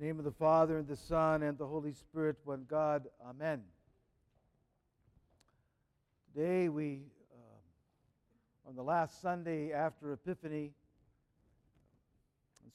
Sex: male